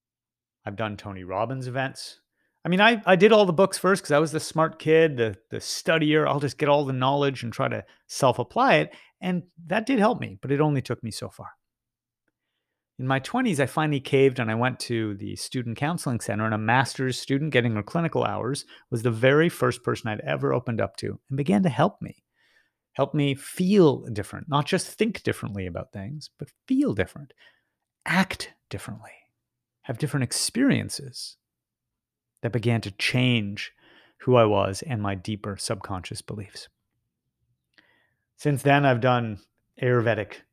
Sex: male